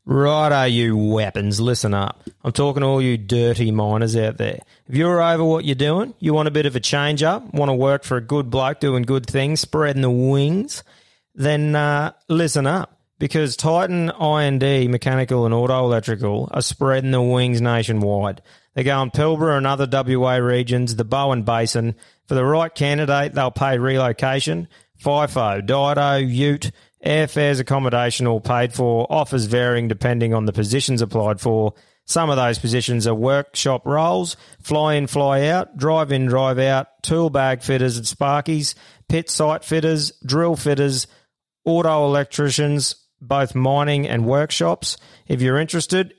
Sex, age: male, 30-49